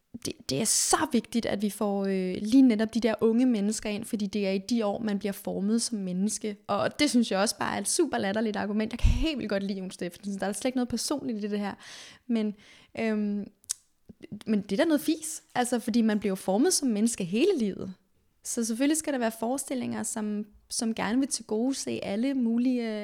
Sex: female